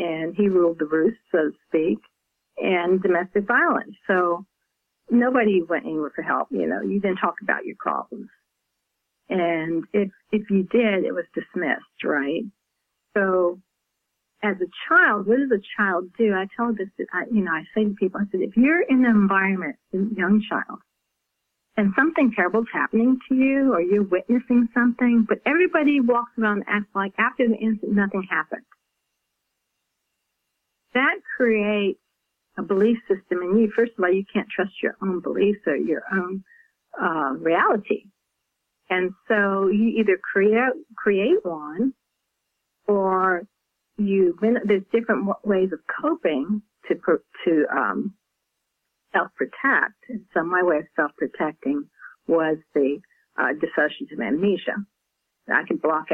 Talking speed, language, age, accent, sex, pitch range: 150 wpm, English, 50-69, American, female, 185-235 Hz